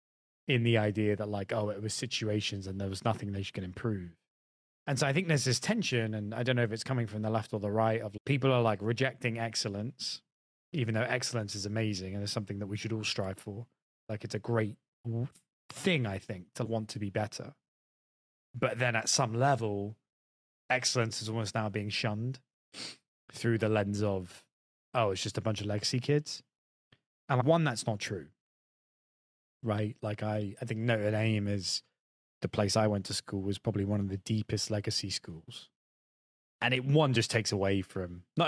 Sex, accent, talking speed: male, British, 195 wpm